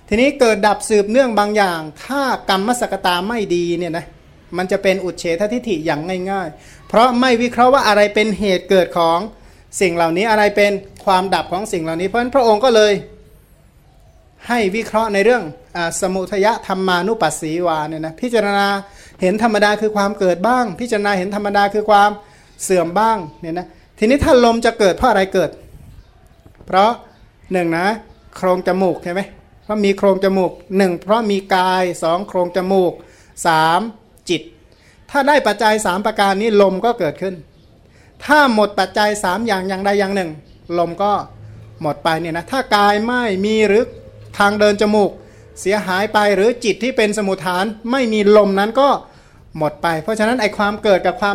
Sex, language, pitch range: male, Thai, 180-215 Hz